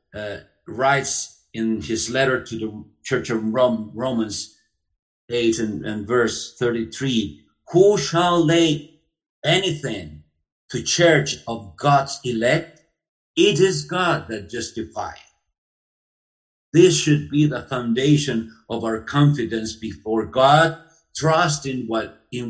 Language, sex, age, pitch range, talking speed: English, male, 50-69, 110-150 Hz, 110 wpm